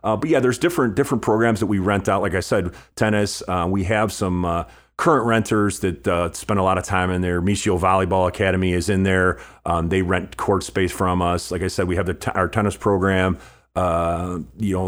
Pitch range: 90-100 Hz